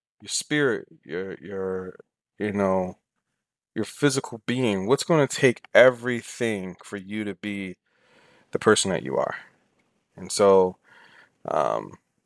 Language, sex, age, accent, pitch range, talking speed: English, male, 30-49, American, 105-135 Hz, 120 wpm